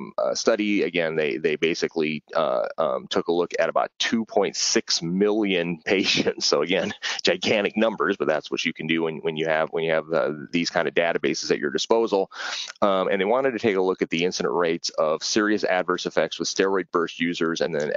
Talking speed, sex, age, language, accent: 205 wpm, male, 30-49, Italian, American